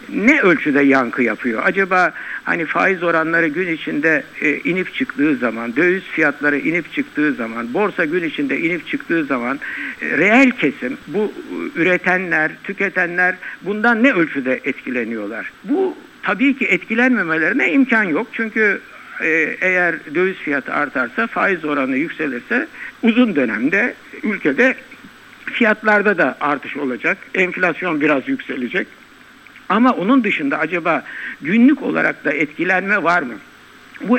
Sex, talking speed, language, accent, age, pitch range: male, 120 wpm, Turkish, native, 60-79, 165-255 Hz